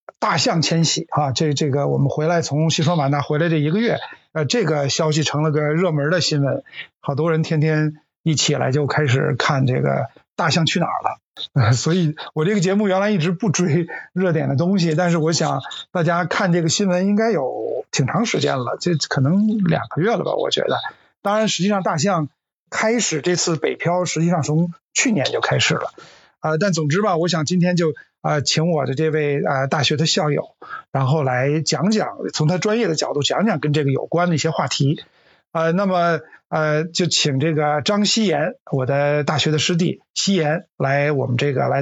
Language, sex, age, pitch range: Chinese, male, 50-69, 150-190 Hz